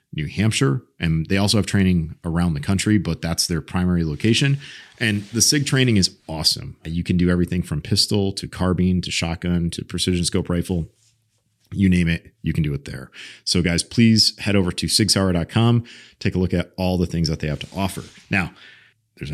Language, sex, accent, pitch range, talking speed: English, male, American, 90-110 Hz, 200 wpm